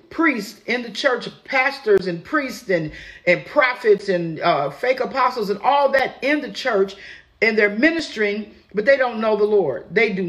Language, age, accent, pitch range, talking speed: English, 50-69, American, 185-245 Hz, 180 wpm